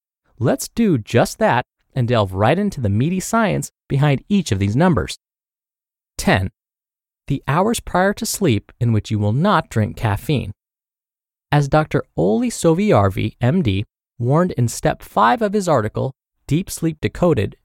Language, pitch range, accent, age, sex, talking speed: English, 115-180 Hz, American, 20-39, male, 150 wpm